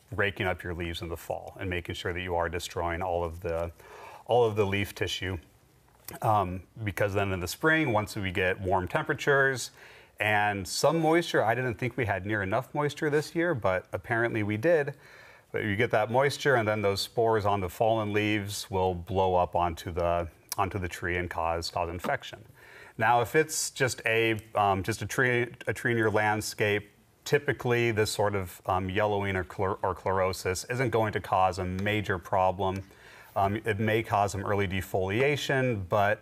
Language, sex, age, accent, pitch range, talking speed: English, male, 30-49, American, 95-115 Hz, 185 wpm